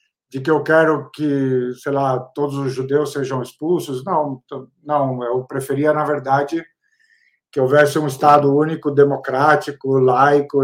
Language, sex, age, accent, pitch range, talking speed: Portuguese, male, 50-69, Brazilian, 135-165 Hz, 140 wpm